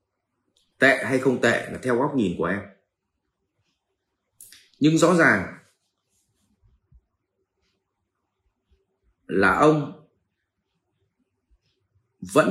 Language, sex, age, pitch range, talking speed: Vietnamese, male, 30-49, 105-160 Hz, 75 wpm